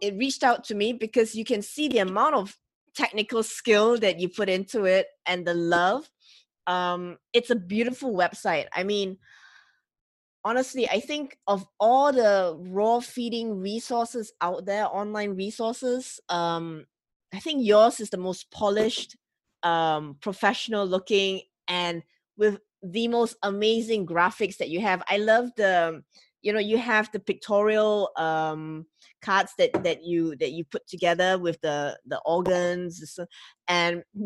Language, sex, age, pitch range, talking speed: English, female, 20-39, 175-225 Hz, 145 wpm